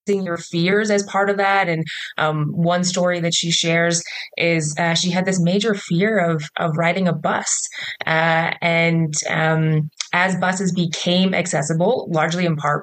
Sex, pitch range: female, 155-185 Hz